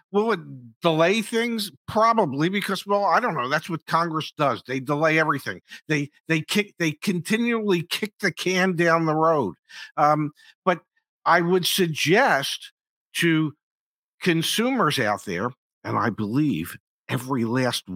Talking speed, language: 140 wpm, English